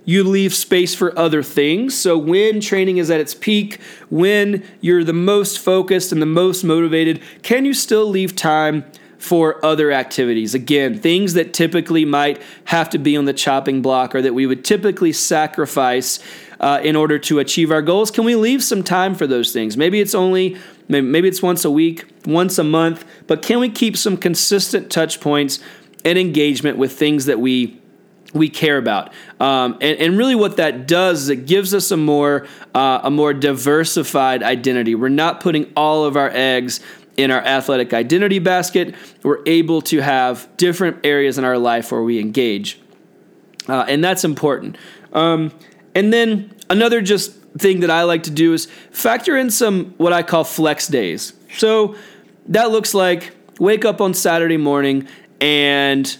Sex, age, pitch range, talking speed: male, 30-49, 145-190 Hz, 180 wpm